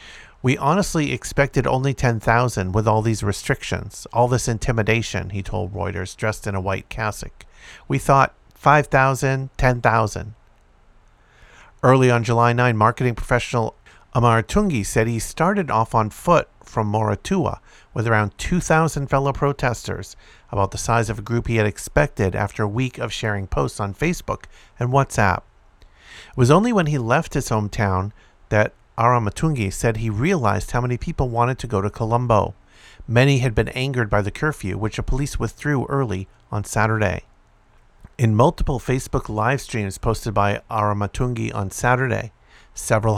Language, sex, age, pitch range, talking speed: English, male, 50-69, 105-135 Hz, 155 wpm